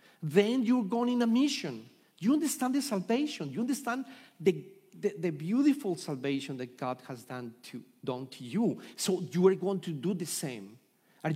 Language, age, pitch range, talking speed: English, 50-69, 130-195 Hz, 180 wpm